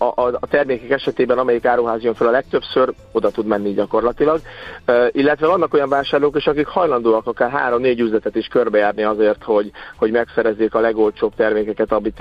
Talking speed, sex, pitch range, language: 175 wpm, male, 115-130 Hz, Hungarian